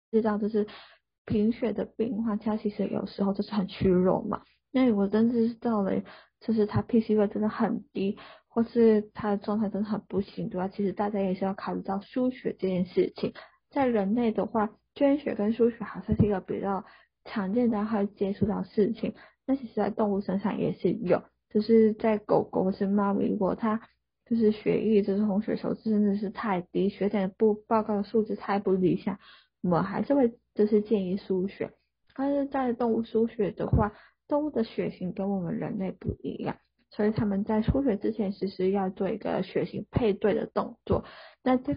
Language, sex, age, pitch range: Chinese, female, 10-29, 195-225 Hz